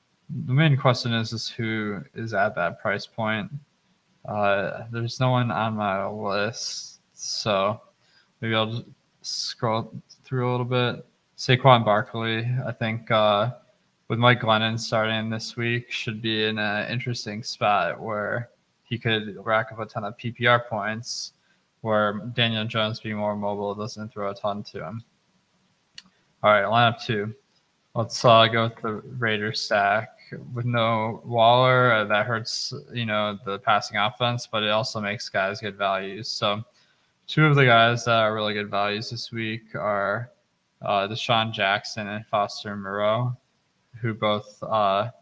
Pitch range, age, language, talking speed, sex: 105-120 Hz, 20-39, English, 155 wpm, male